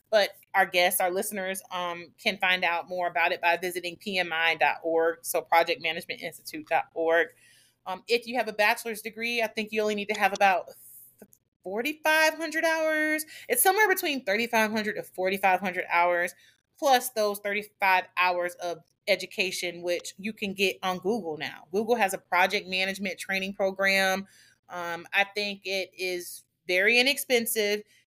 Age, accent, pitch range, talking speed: 30-49, American, 185-230 Hz, 145 wpm